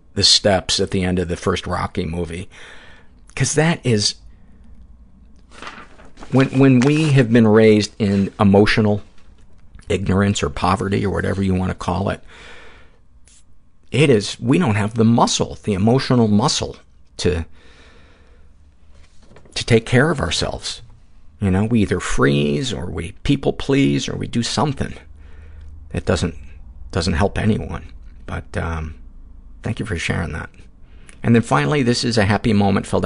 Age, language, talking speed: 50-69, English, 145 wpm